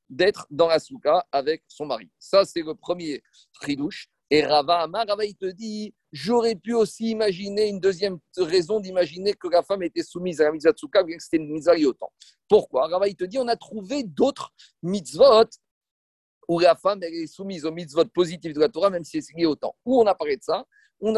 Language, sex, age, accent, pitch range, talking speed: French, male, 50-69, French, 165-240 Hz, 205 wpm